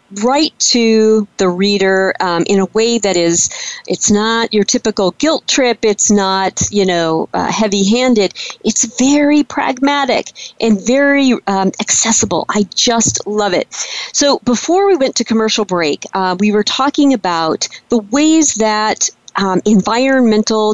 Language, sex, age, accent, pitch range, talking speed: English, female, 40-59, American, 200-275 Hz, 150 wpm